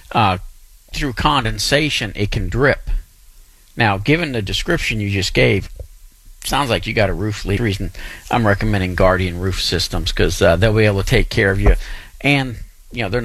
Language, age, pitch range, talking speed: English, 50-69, 100-135 Hz, 180 wpm